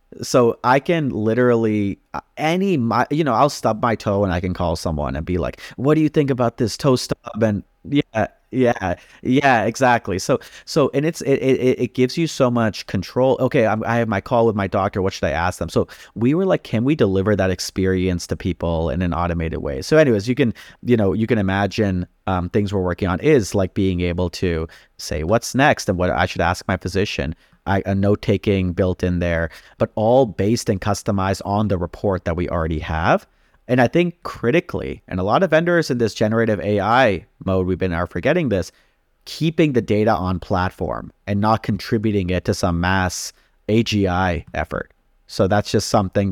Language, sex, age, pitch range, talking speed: English, male, 30-49, 90-120 Hz, 200 wpm